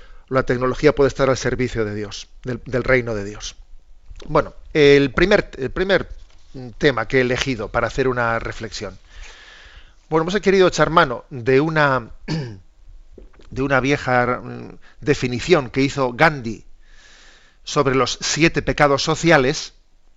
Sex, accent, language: male, Spanish, Spanish